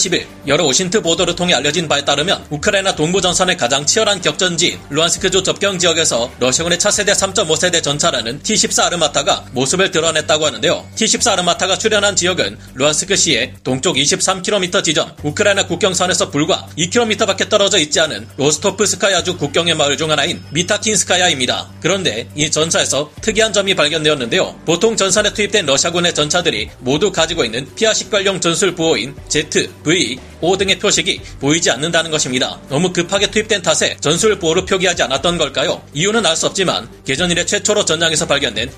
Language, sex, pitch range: Korean, male, 155-200 Hz